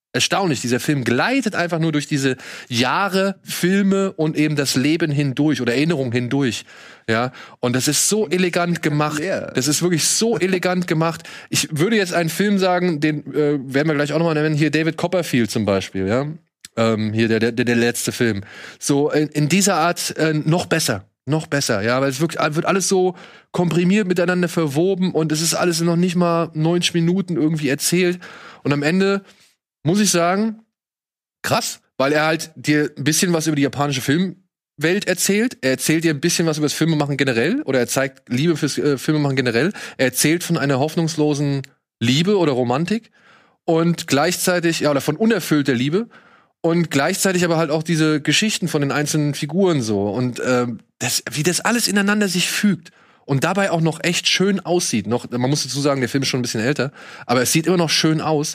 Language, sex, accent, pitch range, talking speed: German, male, German, 140-180 Hz, 195 wpm